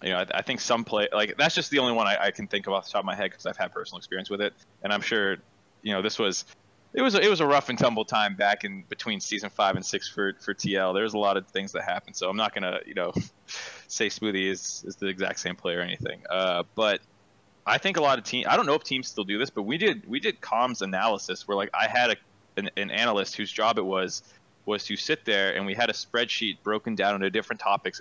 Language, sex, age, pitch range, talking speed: English, male, 20-39, 95-105 Hz, 280 wpm